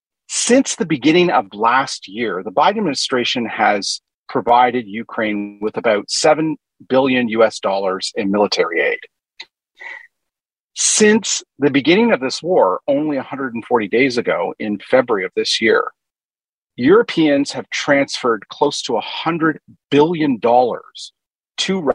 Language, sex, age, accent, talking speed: English, male, 40-59, American, 120 wpm